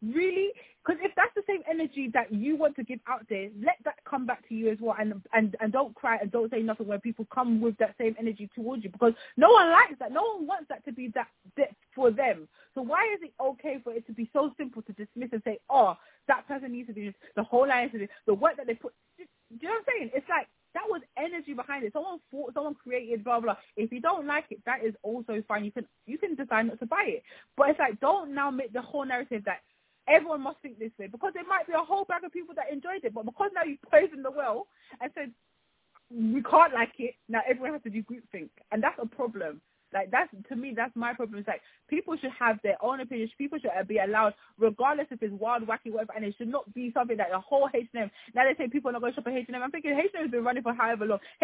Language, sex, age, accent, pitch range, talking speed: English, female, 20-39, British, 225-300 Hz, 275 wpm